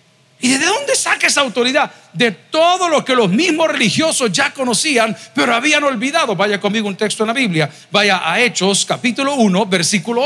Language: Spanish